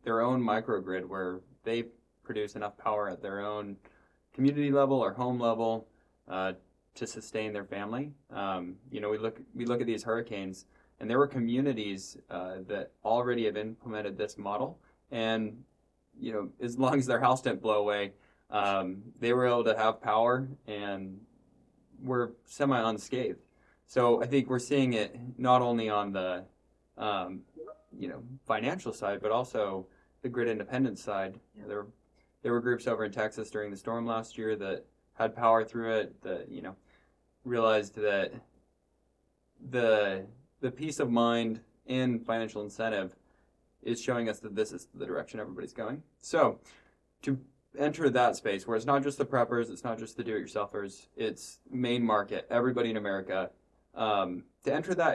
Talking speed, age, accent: 170 wpm, 20-39, American